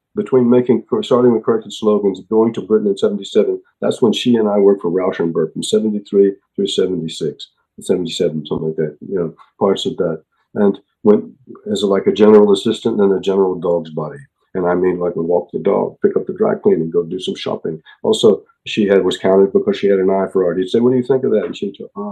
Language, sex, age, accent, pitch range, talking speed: English, male, 50-69, American, 95-130 Hz, 235 wpm